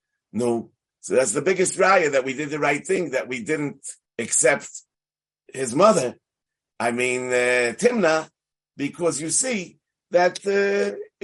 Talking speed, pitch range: 145 wpm, 125-190 Hz